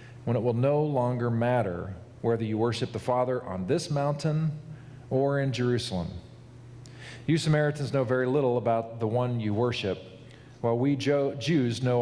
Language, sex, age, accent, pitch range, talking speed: English, male, 40-59, American, 115-130 Hz, 155 wpm